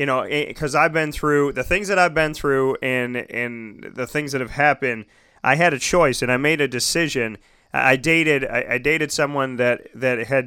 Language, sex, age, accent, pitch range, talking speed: English, male, 30-49, American, 125-150 Hz, 210 wpm